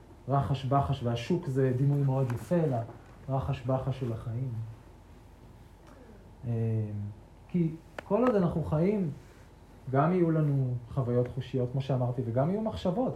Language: Hebrew